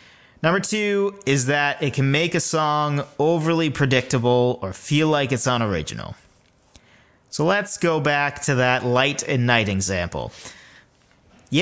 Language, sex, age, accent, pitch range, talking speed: English, male, 30-49, American, 105-165 Hz, 140 wpm